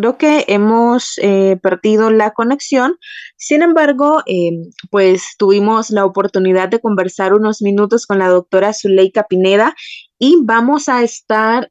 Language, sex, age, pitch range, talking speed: Spanish, female, 20-39, 185-240 Hz, 140 wpm